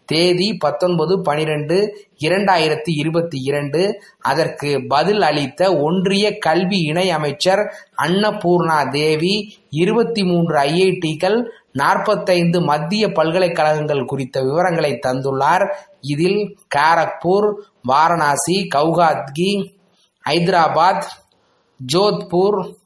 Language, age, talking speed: Tamil, 20-39, 70 wpm